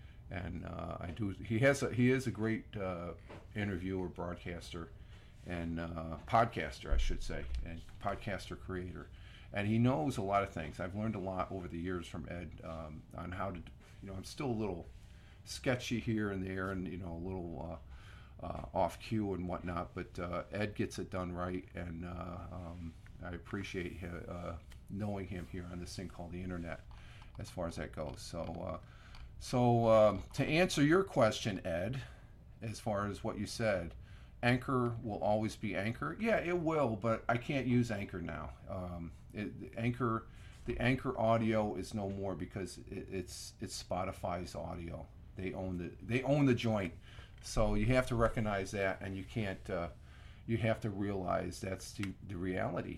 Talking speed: 180 wpm